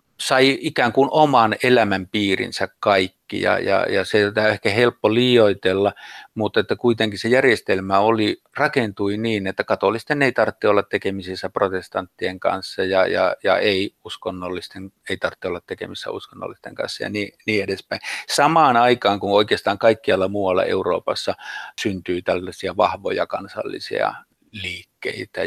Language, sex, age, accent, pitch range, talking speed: Finnish, male, 50-69, native, 95-125 Hz, 135 wpm